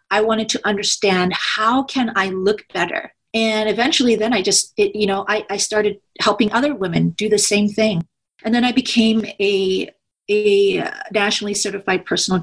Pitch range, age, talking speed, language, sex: 185-220 Hz, 30-49, 175 wpm, English, female